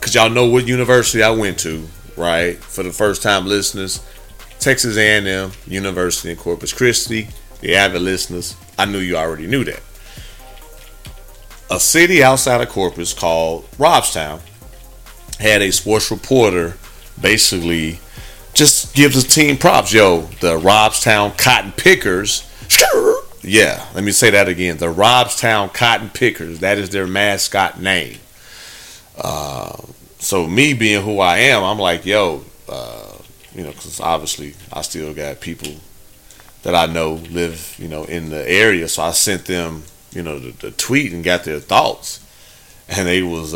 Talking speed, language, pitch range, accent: 150 wpm, English, 85-110 Hz, American